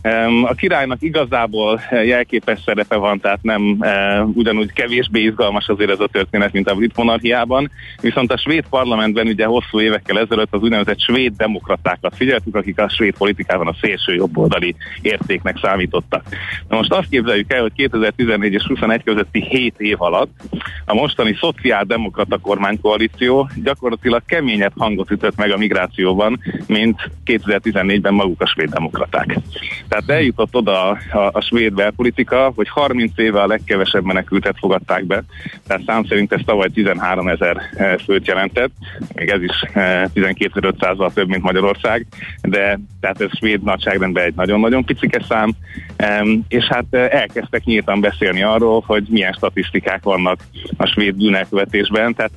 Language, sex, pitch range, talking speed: Hungarian, male, 100-115 Hz, 145 wpm